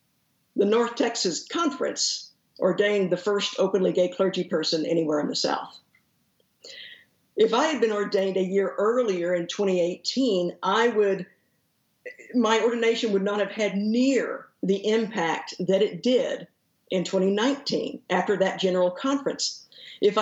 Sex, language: female, English